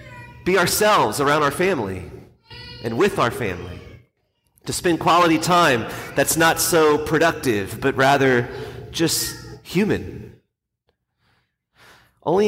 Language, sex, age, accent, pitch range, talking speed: English, male, 30-49, American, 115-150 Hz, 105 wpm